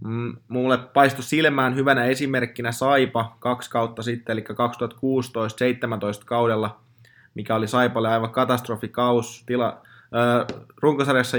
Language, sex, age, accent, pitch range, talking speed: Finnish, male, 20-39, native, 115-130 Hz, 105 wpm